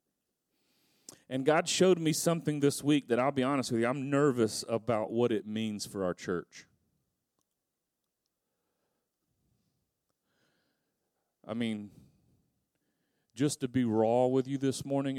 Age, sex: 40-59, male